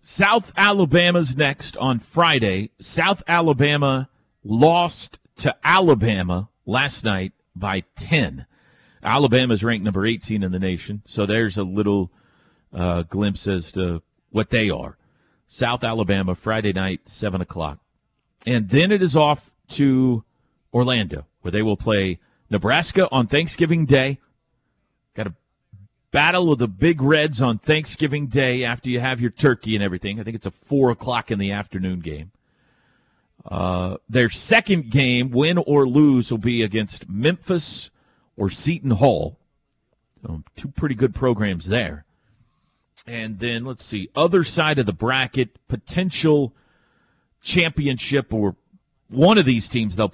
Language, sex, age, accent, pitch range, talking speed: English, male, 40-59, American, 100-145 Hz, 135 wpm